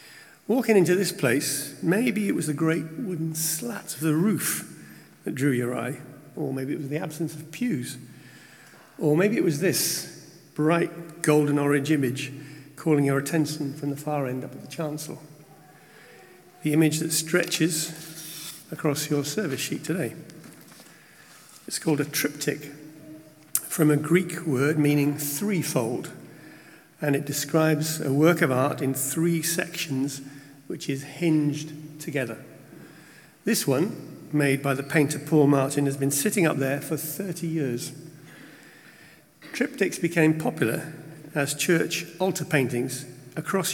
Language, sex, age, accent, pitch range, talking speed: English, male, 50-69, British, 145-160 Hz, 140 wpm